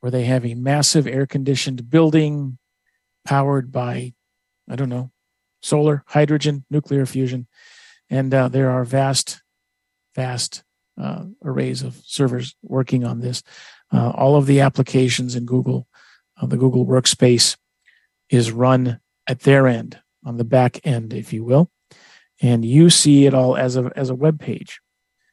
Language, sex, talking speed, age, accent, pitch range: English, male, 150 wpm, 50-69, American, 125-155 Hz